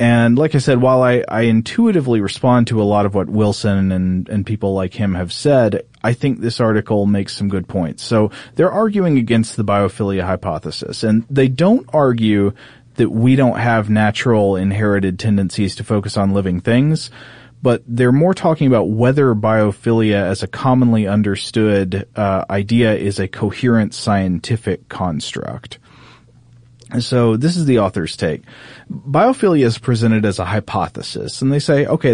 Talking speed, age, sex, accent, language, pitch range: 160 wpm, 30-49, male, American, English, 100-125 Hz